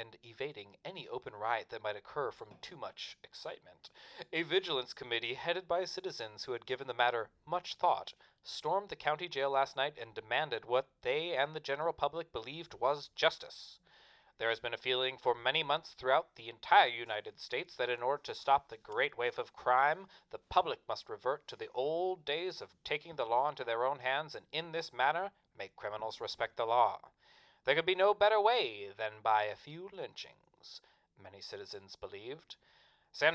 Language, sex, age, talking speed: English, male, 30-49, 190 wpm